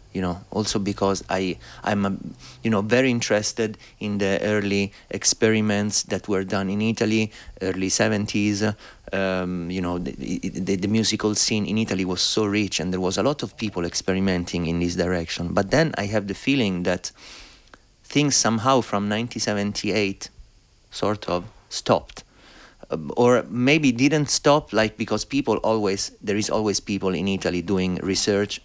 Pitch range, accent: 95-115 Hz, Italian